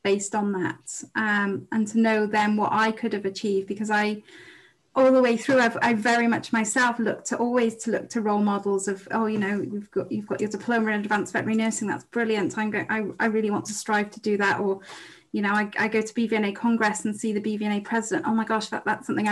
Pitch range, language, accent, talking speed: 210-235 Hz, English, British, 245 wpm